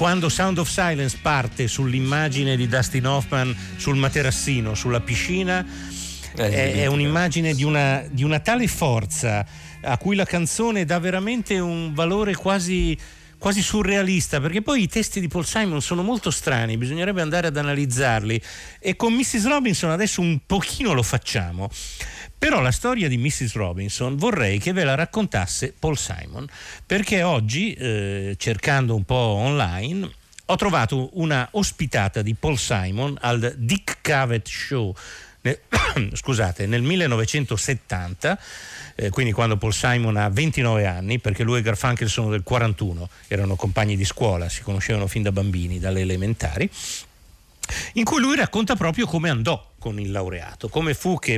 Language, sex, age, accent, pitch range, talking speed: Italian, male, 50-69, native, 110-175 Hz, 150 wpm